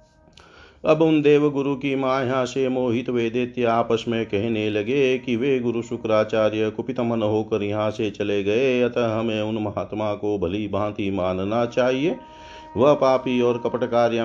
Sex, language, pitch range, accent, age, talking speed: male, Hindi, 100-120 Hz, native, 50-69, 160 wpm